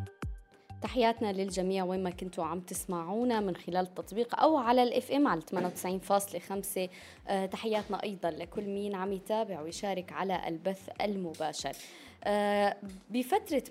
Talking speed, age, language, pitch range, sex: 120 wpm, 20-39, Arabic, 180-215 Hz, female